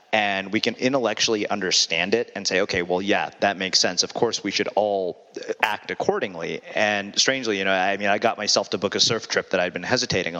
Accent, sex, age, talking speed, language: American, male, 30-49, 225 wpm, English